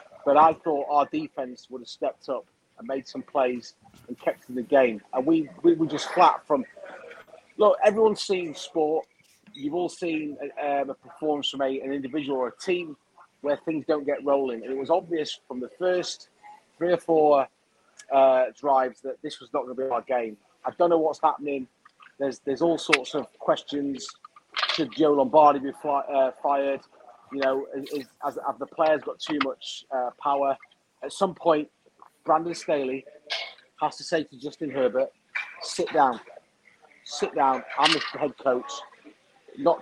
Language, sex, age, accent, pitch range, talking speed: English, male, 30-49, British, 135-160 Hz, 175 wpm